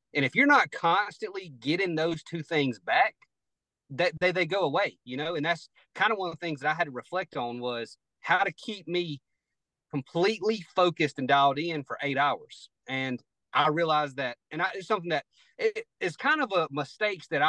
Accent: American